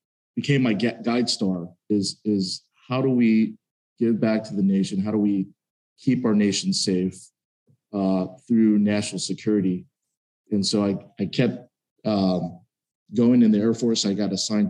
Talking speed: 165 wpm